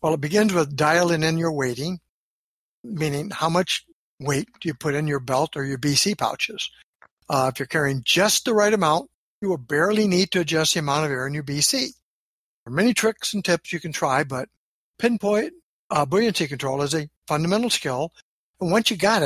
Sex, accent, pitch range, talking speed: male, American, 145-185 Hz, 205 wpm